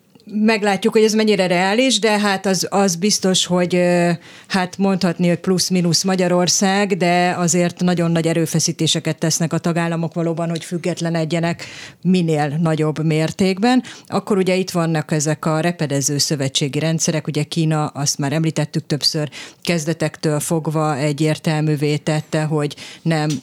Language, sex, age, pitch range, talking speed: Hungarian, female, 30-49, 155-180 Hz, 135 wpm